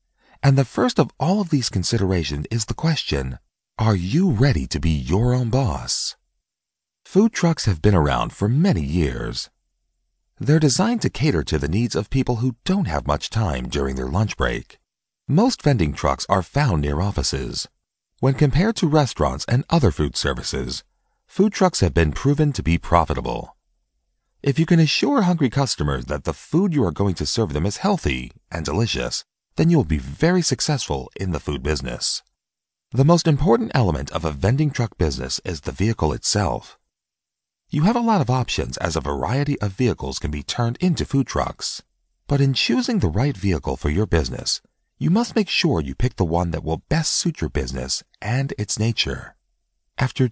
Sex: male